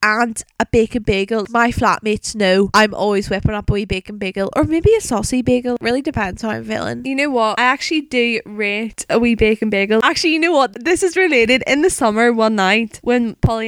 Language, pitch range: English, 210-240 Hz